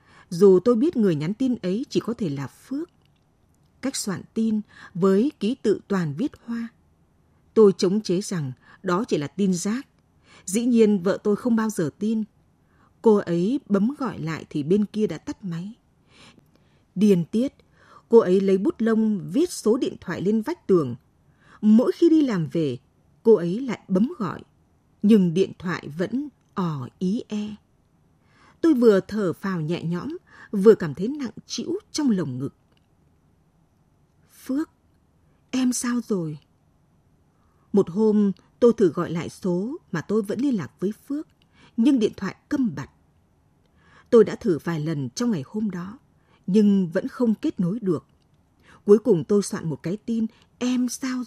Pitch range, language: 180-235 Hz, Vietnamese